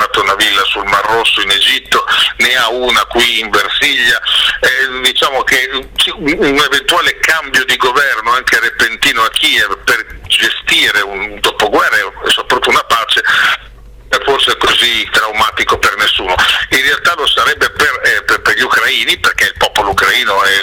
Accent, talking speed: native, 155 wpm